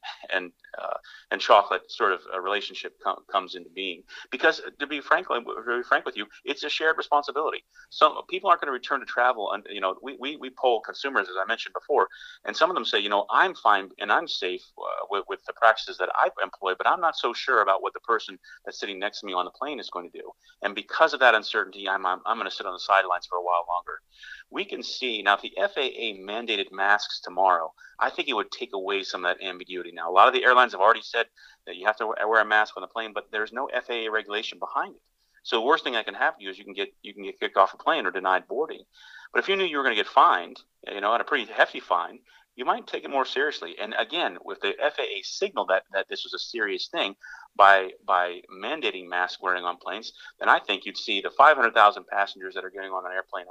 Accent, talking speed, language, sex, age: American, 255 wpm, English, male, 30-49